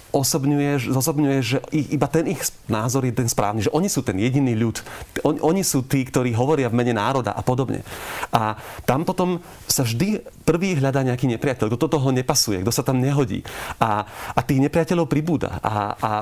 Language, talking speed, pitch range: Slovak, 180 wpm, 120-145 Hz